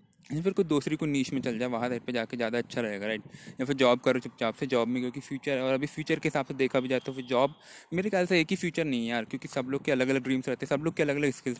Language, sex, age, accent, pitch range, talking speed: Hindi, male, 20-39, native, 125-155 Hz, 325 wpm